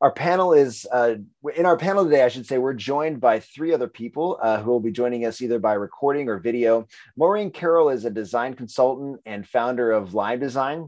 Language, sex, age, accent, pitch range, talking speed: English, male, 30-49, American, 120-150 Hz, 215 wpm